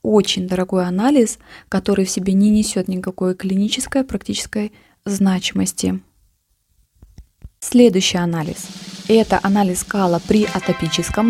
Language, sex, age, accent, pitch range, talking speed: Russian, female, 20-39, native, 190-215 Hz, 100 wpm